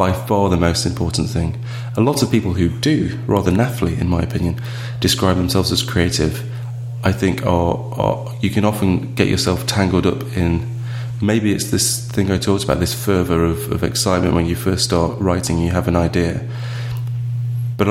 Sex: male